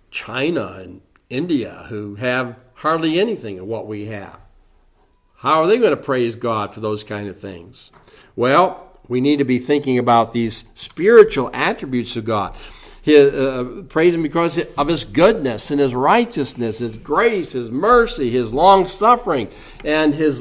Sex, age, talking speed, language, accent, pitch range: male, 60-79, 155 wpm, English, American, 125-175 Hz